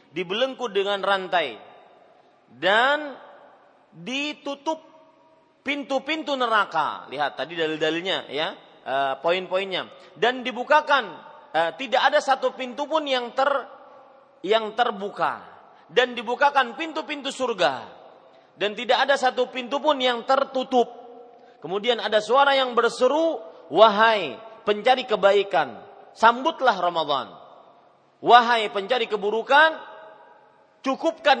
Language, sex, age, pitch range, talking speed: Malay, male, 40-59, 200-275 Hz, 95 wpm